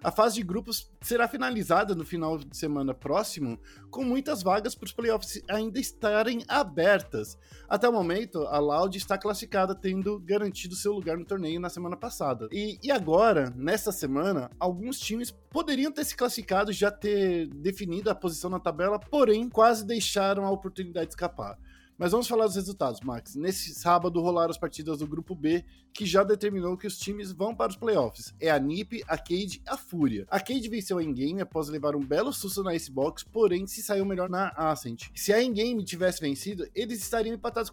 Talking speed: 195 wpm